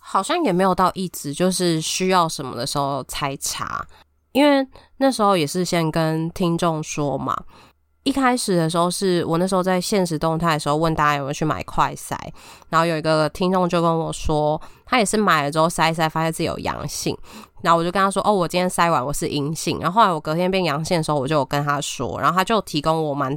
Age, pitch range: 20-39, 150-180 Hz